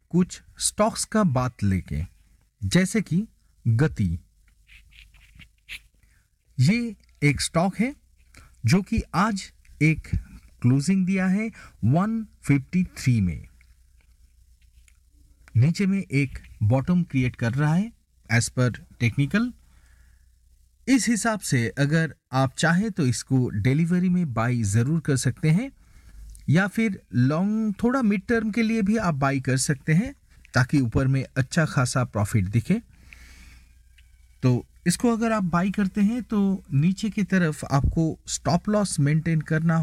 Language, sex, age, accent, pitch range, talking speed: Hindi, male, 50-69, native, 110-185 Hz, 125 wpm